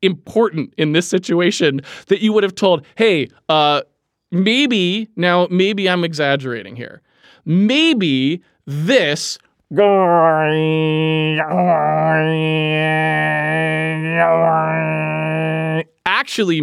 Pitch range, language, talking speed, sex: 160-240 Hz, English, 70 wpm, male